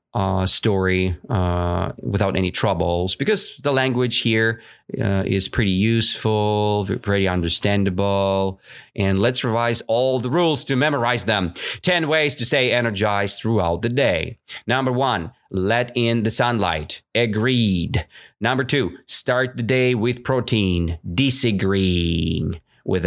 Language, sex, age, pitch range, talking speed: English, male, 30-49, 95-125 Hz, 125 wpm